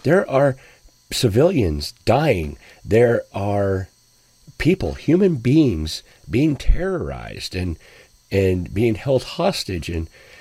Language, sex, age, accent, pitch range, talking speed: English, male, 50-69, American, 95-140 Hz, 105 wpm